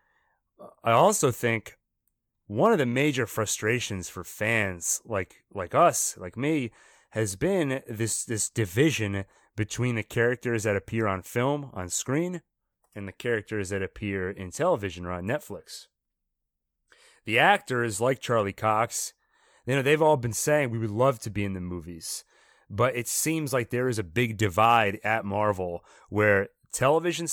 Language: English